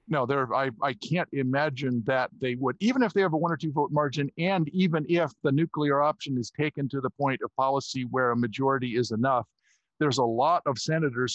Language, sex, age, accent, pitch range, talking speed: English, male, 50-69, American, 125-160 Hz, 215 wpm